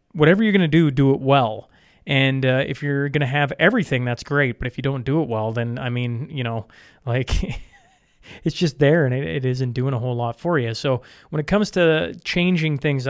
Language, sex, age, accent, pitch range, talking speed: English, male, 30-49, American, 130-155 Hz, 235 wpm